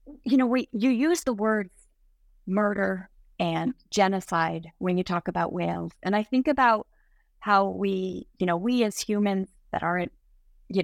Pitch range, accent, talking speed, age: 185-230 Hz, American, 160 wpm, 30-49